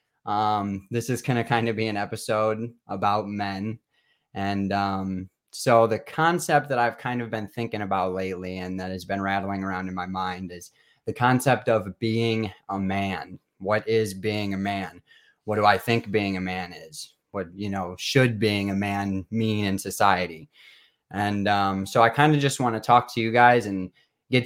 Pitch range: 100-120 Hz